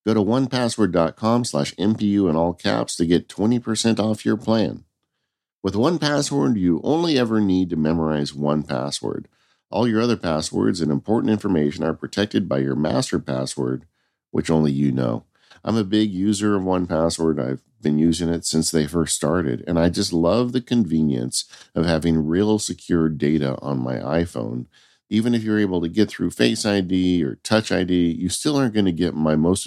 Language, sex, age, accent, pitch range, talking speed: English, male, 50-69, American, 70-100 Hz, 175 wpm